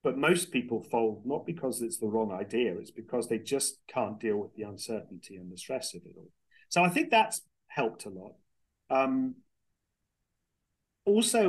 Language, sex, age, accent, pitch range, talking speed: English, male, 40-59, British, 105-135 Hz, 180 wpm